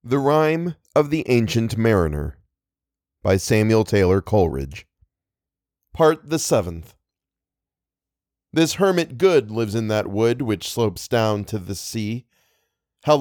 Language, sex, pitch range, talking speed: English, male, 100-145 Hz, 125 wpm